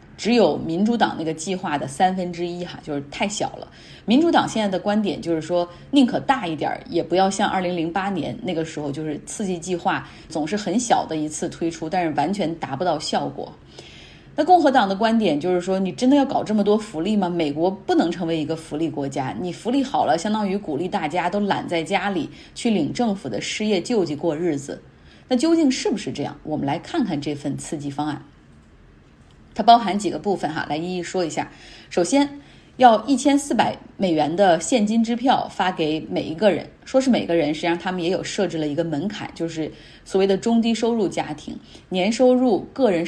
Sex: female